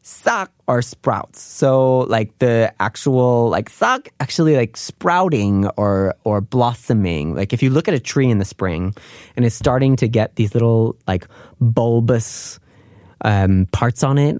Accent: American